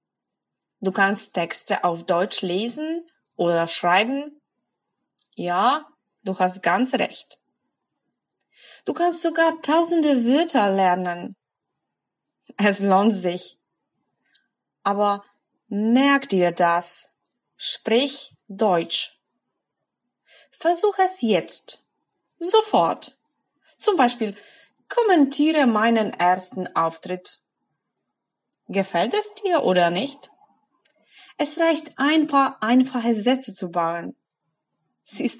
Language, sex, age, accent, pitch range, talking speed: Polish, female, 20-39, German, 190-305 Hz, 90 wpm